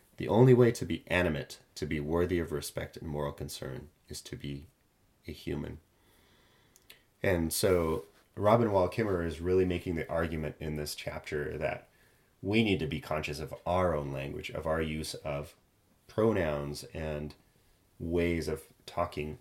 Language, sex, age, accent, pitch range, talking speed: English, male, 30-49, American, 75-95 Hz, 160 wpm